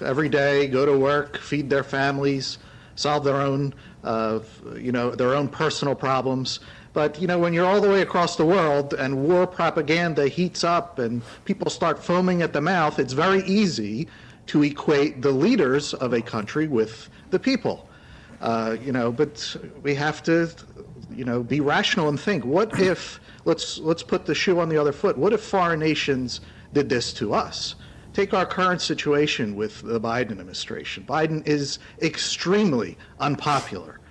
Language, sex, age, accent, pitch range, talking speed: English, male, 50-69, American, 130-175 Hz, 170 wpm